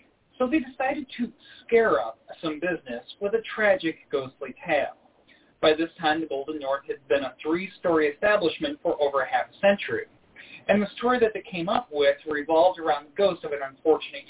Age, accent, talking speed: 40-59, American, 190 wpm